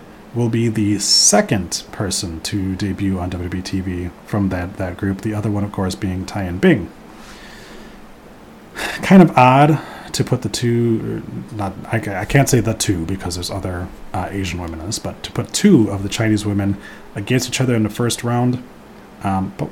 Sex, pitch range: male, 100-130 Hz